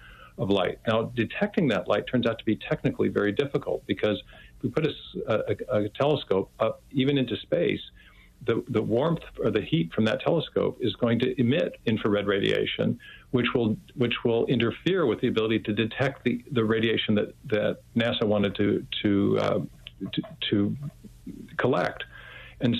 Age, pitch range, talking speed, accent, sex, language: 50-69, 105-130 Hz, 170 wpm, American, male, English